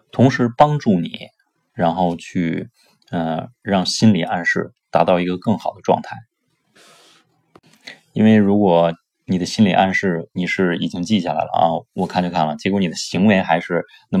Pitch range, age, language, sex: 85-95 Hz, 20-39, Chinese, male